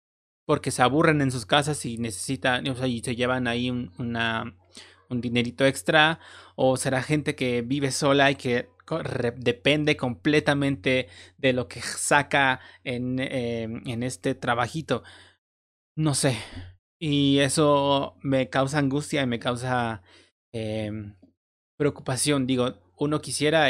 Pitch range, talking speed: 115-140 Hz, 135 wpm